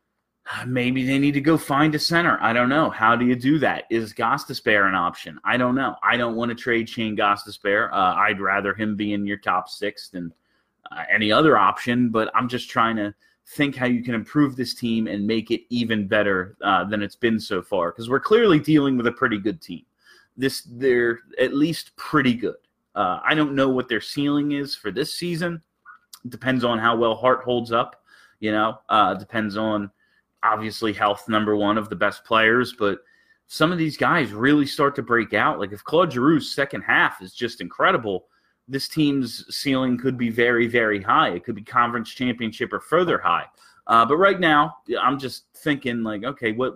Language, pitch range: English, 110-135 Hz